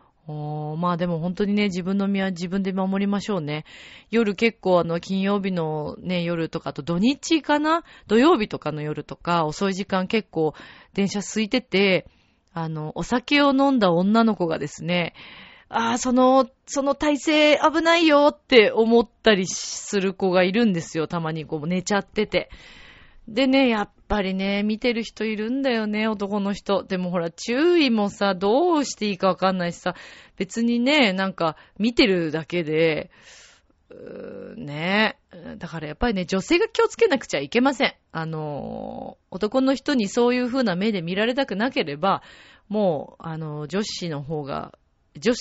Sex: female